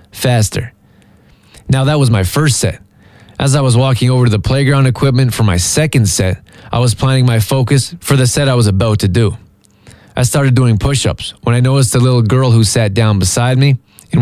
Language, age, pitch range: English, 20-39, 110-135 Hz